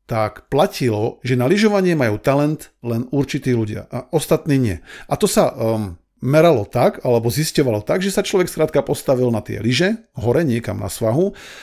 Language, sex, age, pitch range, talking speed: Slovak, male, 50-69, 120-180 Hz, 175 wpm